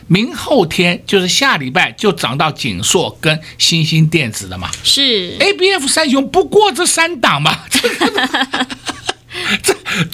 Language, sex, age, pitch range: Chinese, male, 60-79, 130-215 Hz